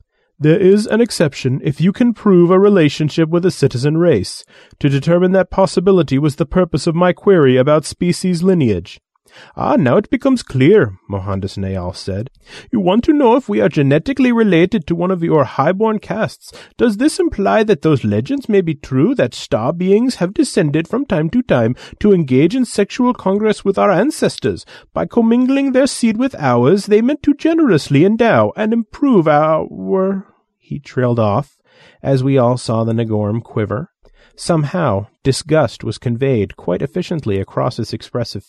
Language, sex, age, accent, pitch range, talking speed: English, male, 30-49, American, 135-200 Hz, 170 wpm